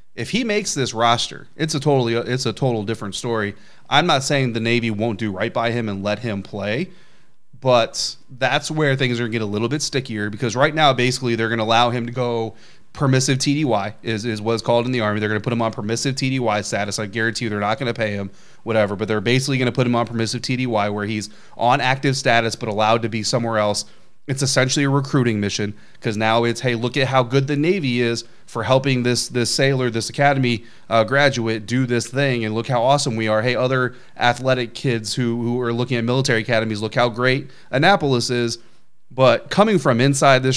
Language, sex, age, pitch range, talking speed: English, male, 30-49, 115-135 Hz, 230 wpm